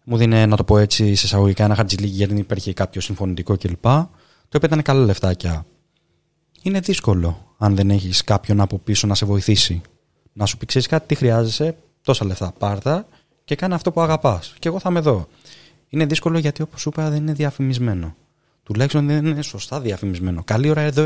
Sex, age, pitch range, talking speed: male, 20-39, 100-150 Hz, 190 wpm